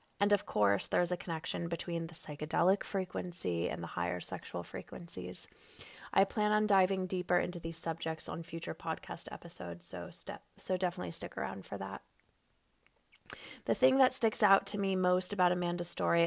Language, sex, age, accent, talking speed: English, female, 20-39, American, 170 wpm